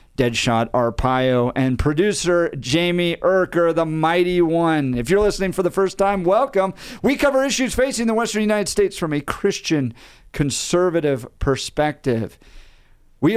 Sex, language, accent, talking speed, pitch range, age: male, English, American, 140 wpm, 130-180 Hz, 50-69